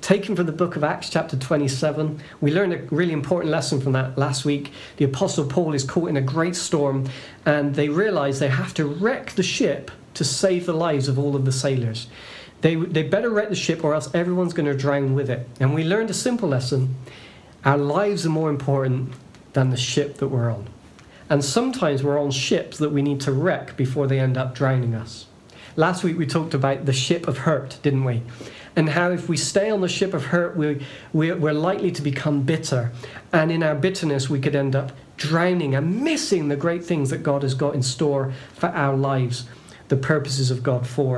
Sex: male